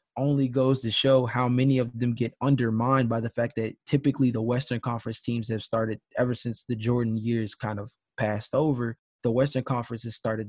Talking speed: 200 wpm